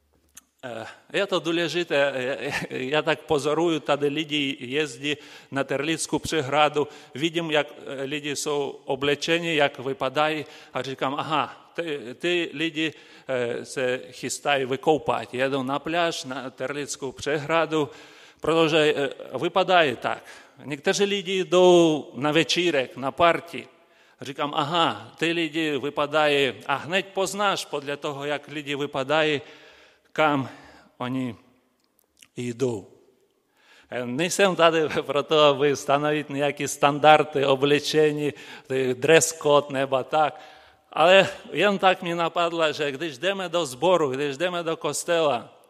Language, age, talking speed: Czech, 40-59, 115 wpm